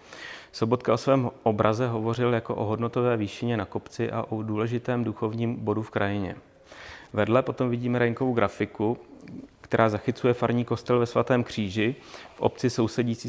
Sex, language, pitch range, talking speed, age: male, Czech, 105-120 Hz, 150 wpm, 30-49